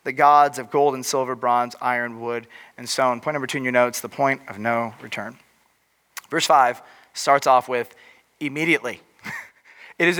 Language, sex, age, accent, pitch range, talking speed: English, male, 30-49, American, 145-195 Hz, 175 wpm